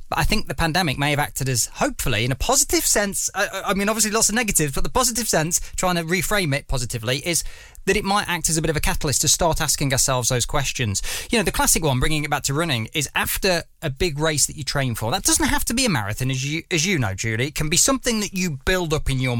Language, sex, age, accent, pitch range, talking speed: English, male, 20-39, British, 140-195 Hz, 270 wpm